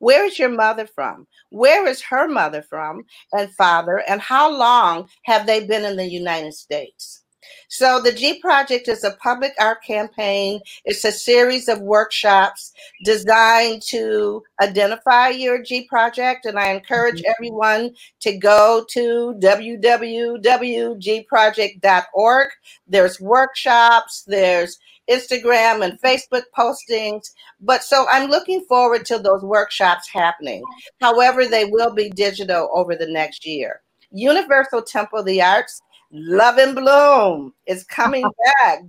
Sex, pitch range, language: female, 205-250 Hz, English